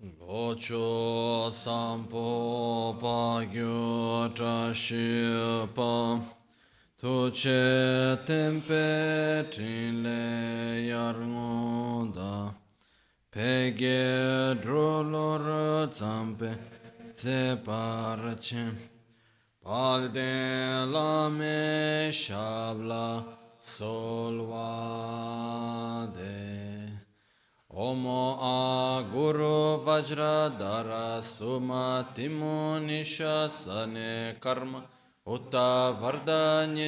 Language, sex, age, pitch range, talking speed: Italian, male, 30-49, 115-130 Hz, 35 wpm